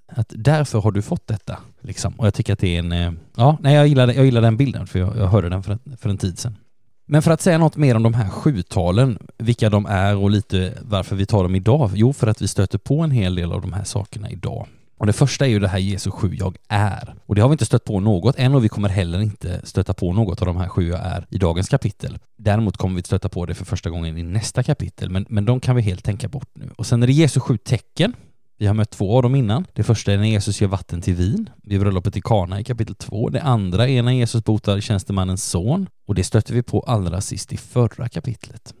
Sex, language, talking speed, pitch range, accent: male, Swedish, 270 wpm, 100-125 Hz, native